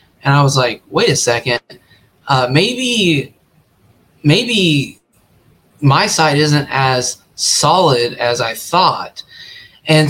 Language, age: English, 20-39